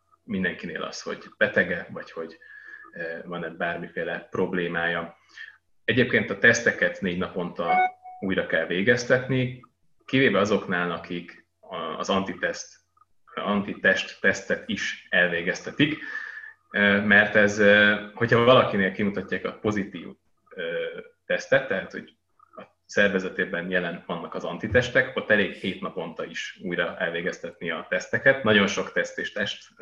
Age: 30-49